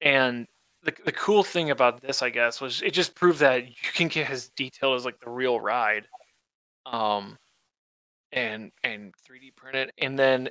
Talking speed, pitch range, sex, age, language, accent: 190 wpm, 120-145 Hz, male, 20-39, English, American